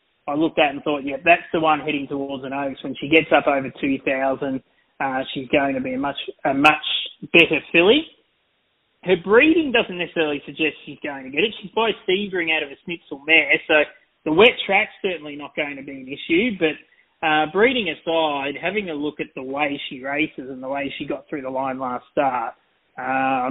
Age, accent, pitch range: 20-39, Australian, 140-180 Hz